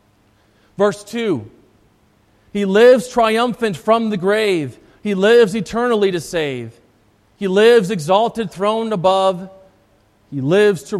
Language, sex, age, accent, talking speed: English, male, 40-59, American, 115 wpm